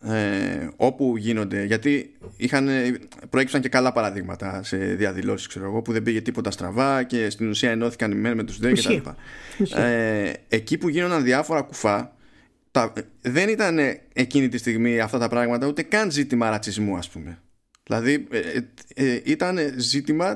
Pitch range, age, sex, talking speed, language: 110-145 Hz, 20-39, male, 160 wpm, Greek